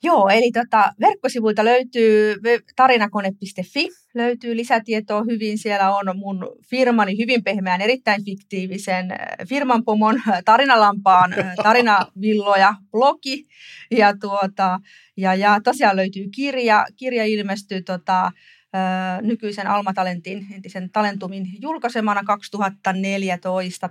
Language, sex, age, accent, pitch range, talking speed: Finnish, female, 30-49, native, 185-215 Hz, 95 wpm